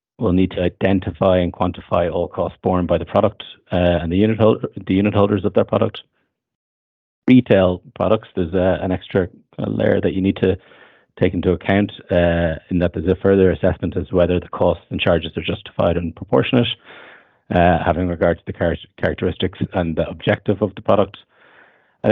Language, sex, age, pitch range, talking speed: English, male, 30-49, 90-100 Hz, 185 wpm